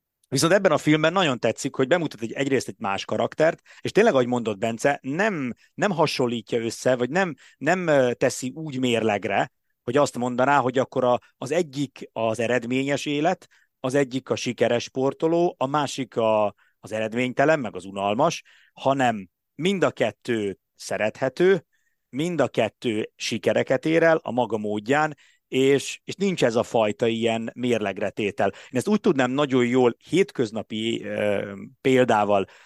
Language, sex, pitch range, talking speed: Hungarian, male, 110-145 Hz, 145 wpm